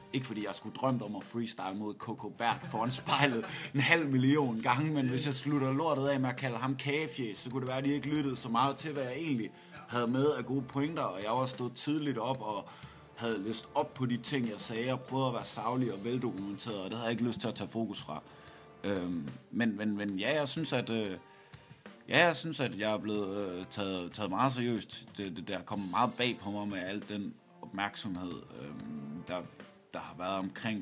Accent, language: native, Danish